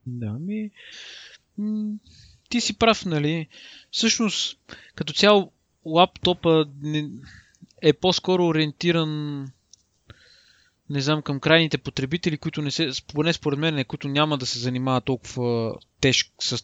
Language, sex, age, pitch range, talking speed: Bulgarian, male, 20-39, 135-180 Hz, 110 wpm